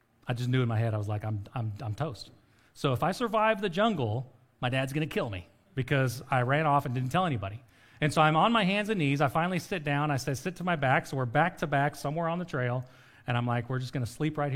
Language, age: English, 40-59